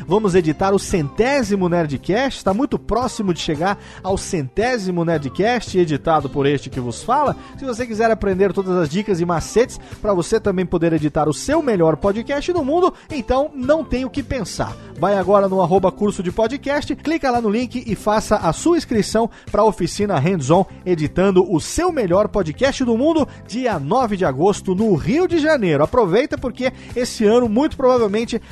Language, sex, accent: Portuguese, male, Brazilian